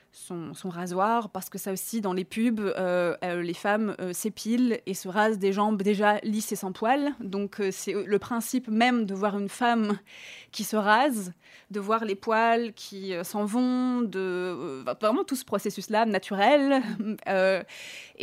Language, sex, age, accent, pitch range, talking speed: French, female, 20-39, French, 190-225 Hz, 180 wpm